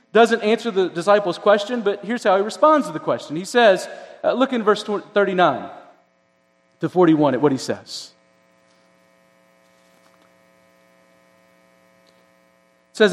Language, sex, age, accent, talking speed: English, male, 40-59, American, 130 wpm